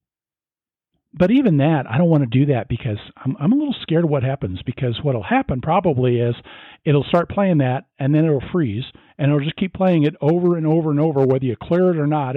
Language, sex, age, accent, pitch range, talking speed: English, male, 50-69, American, 125-170 Hz, 250 wpm